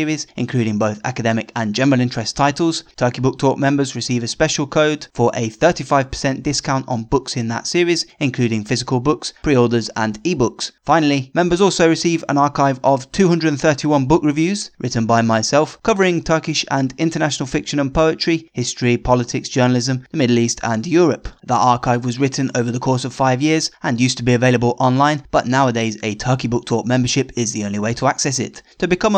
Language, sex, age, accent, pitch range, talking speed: English, male, 20-39, British, 120-150 Hz, 185 wpm